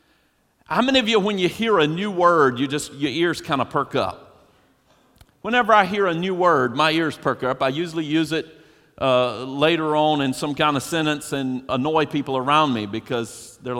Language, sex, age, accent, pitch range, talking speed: English, male, 40-59, American, 135-185 Hz, 205 wpm